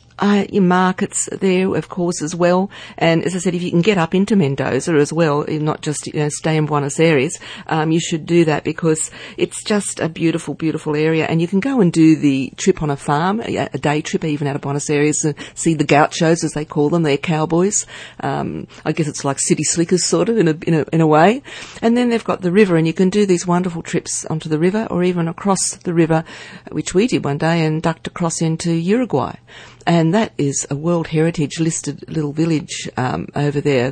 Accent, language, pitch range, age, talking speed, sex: Australian, English, 150-180 Hz, 50-69, 230 wpm, female